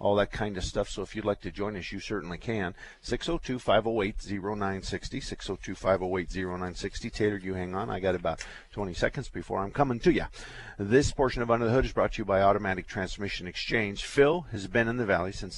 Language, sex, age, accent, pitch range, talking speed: English, male, 50-69, American, 90-110 Hz, 200 wpm